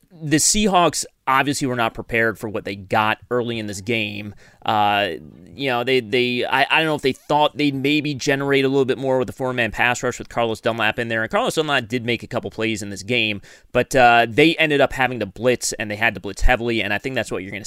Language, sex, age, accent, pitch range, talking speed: English, male, 30-49, American, 105-130 Hz, 250 wpm